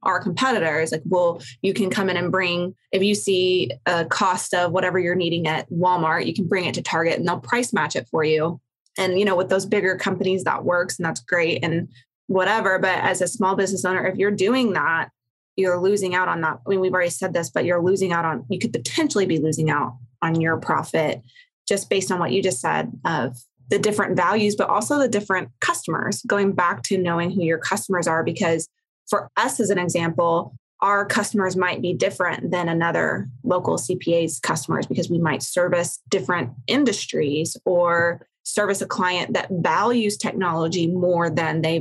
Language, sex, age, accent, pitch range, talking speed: English, female, 20-39, American, 170-195 Hz, 200 wpm